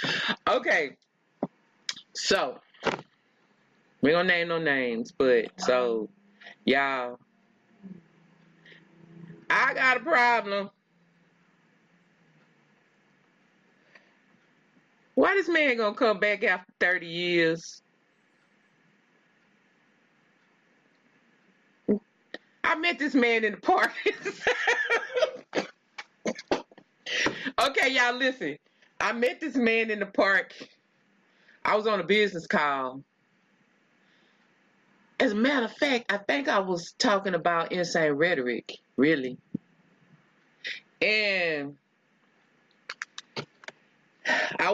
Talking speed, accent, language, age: 85 wpm, American, English, 30-49